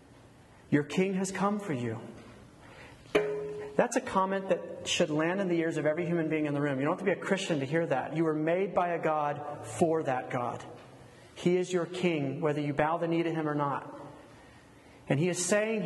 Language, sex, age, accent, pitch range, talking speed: English, male, 40-59, American, 145-185 Hz, 220 wpm